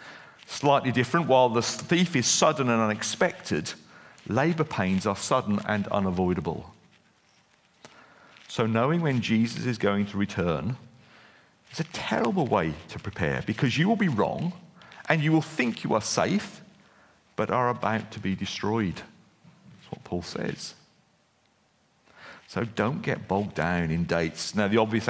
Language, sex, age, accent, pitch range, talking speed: English, male, 50-69, British, 100-130 Hz, 145 wpm